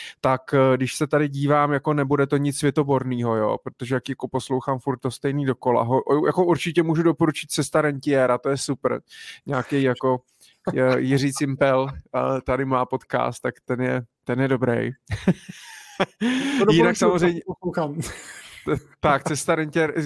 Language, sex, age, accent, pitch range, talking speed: Czech, male, 20-39, native, 130-155 Hz, 145 wpm